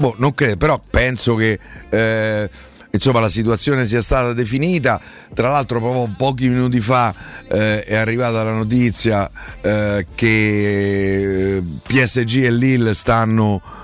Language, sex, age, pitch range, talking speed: Italian, male, 50-69, 105-125 Hz, 130 wpm